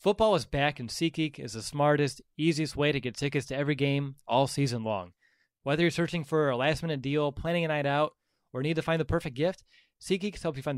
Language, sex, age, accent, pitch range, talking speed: English, male, 20-39, American, 130-150 Hz, 230 wpm